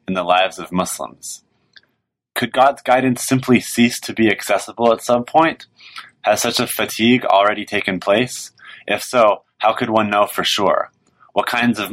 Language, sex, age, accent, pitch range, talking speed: English, male, 20-39, American, 95-115 Hz, 165 wpm